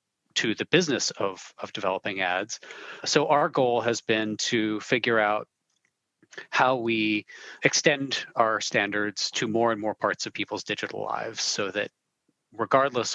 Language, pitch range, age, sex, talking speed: English, 100-115 Hz, 40-59, male, 145 wpm